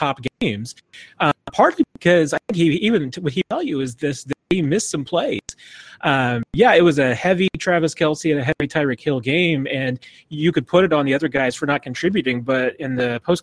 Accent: American